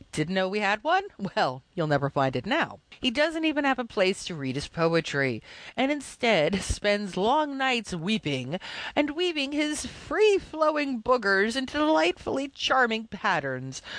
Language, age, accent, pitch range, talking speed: English, 40-59, American, 160-260 Hz, 155 wpm